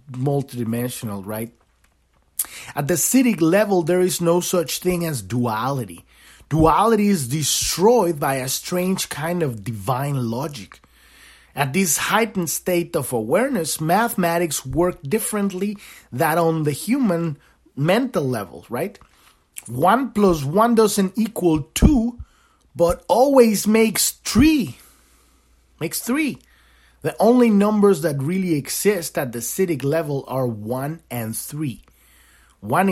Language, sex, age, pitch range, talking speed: English, male, 30-49, 120-180 Hz, 120 wpm